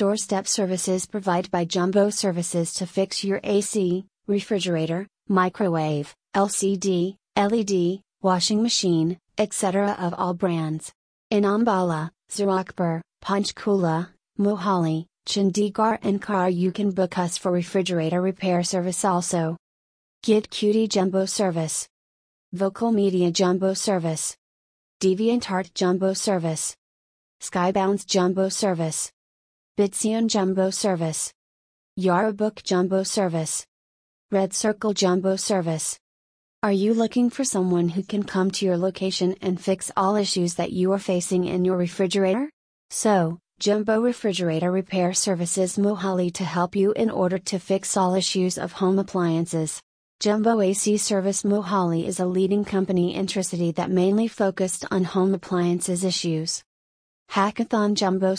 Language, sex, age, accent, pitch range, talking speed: English, female, 30-49, American, 175-200 Hz, 125 wpm